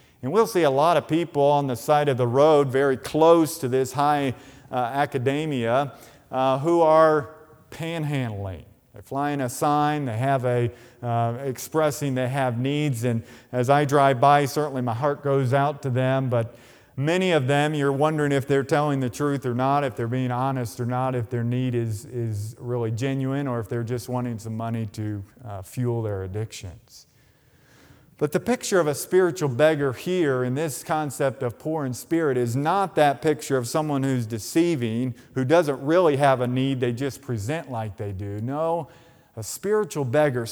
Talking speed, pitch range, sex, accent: 185 wpm, 120-150 Hz, male, American